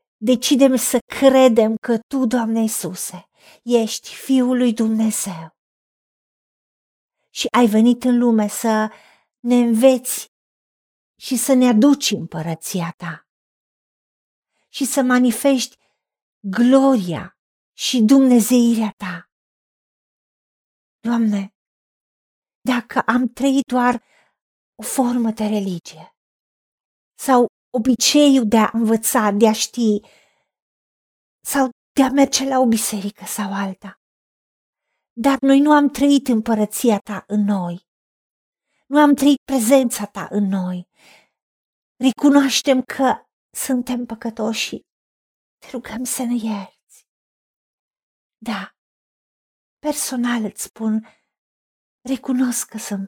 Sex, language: female, Romanian